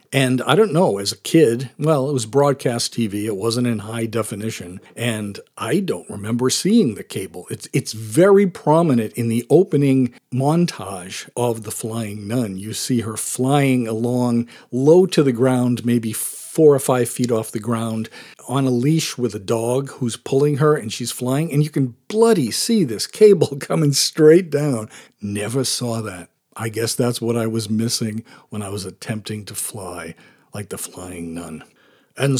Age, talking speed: 50-69, 180 wpm